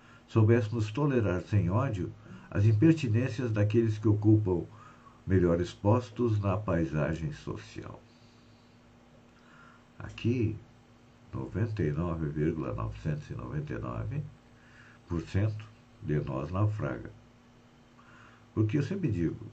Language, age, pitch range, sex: Portuguese, 60-79, 100-120 Hz, male